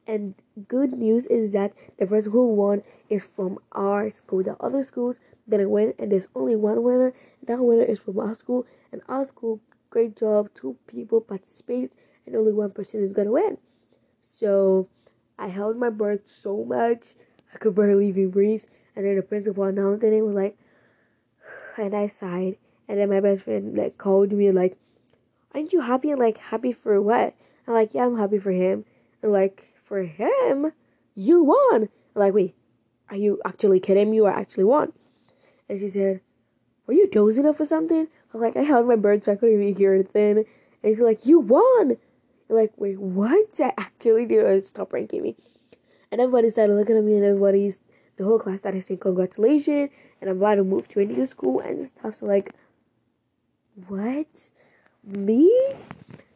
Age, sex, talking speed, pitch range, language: 10-29, female, 190 wpm, 195-235 Hz, English